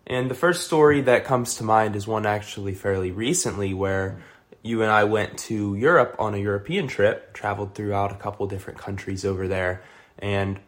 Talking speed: 185 wpm